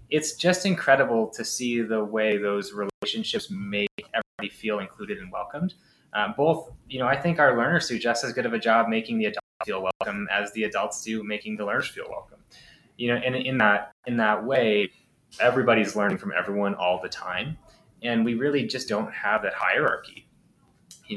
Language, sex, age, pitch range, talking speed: English, male, 20-39, 105-120 Hz, 195 wpm